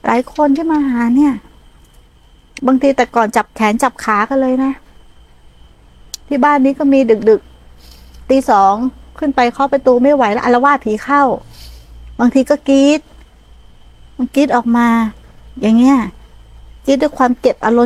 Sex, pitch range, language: female, 220-275 Hz, Thai